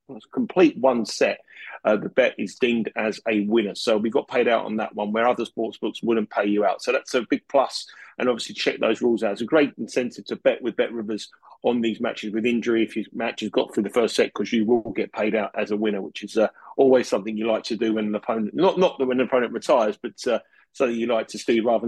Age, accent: 30-49, British